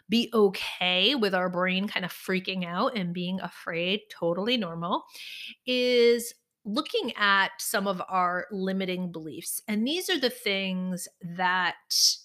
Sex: female